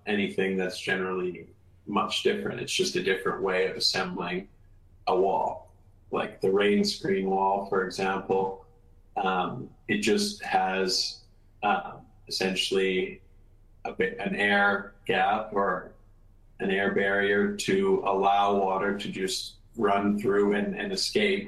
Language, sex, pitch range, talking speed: English, male, 95-105 Hz, 130 wpm